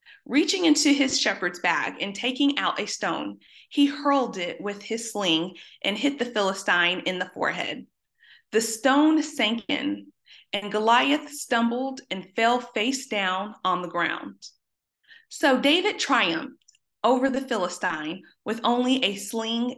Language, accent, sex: English, American, female